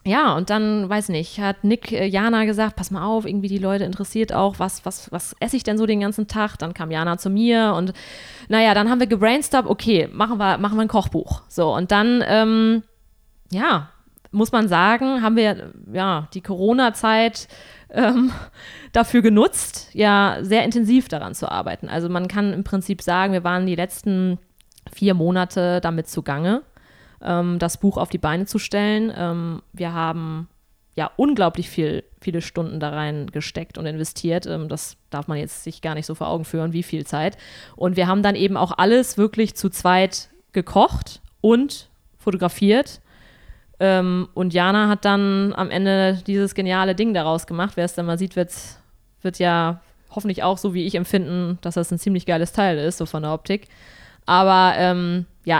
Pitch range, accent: 175-210 Hz, German